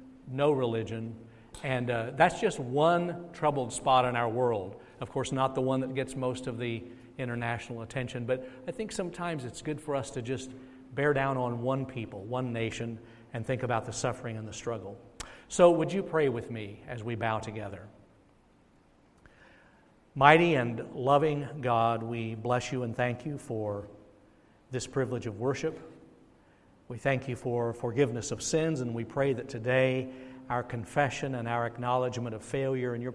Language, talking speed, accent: English, 170 wpm, American